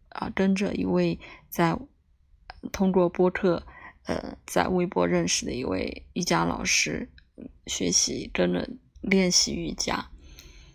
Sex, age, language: female, 20-39, Chinese